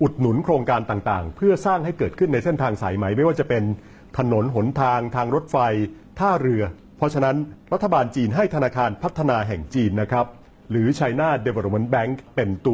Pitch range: 105-145 Hz